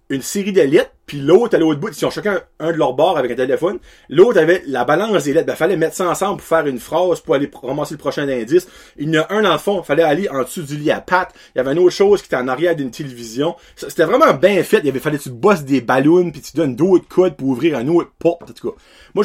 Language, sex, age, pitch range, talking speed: French, male, 30-49, 145-200 Hz, 305 wpm